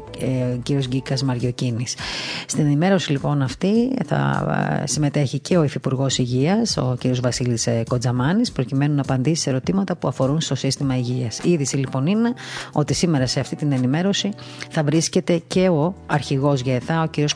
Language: Greek